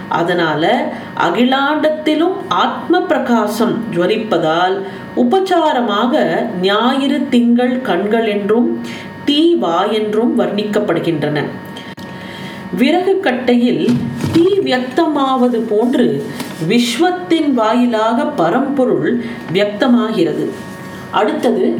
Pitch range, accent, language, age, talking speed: 210-260 Hz, native, Tamil, 40-59, 60 wpm